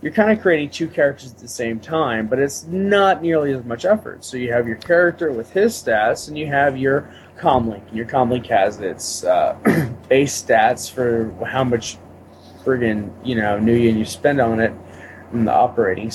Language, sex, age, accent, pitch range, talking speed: English, male, 20-39, American, 115-150 Hz, 180 wpm